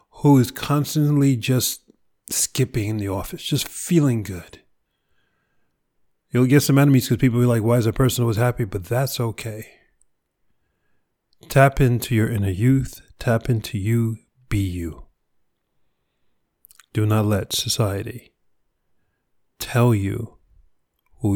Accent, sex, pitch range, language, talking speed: American, male, 95-120 Hz, English, 130 wpm